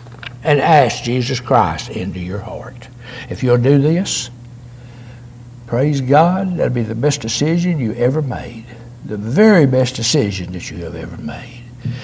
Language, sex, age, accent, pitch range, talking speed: English, male, 60-79, American, 120-155 Hz, 150 wpm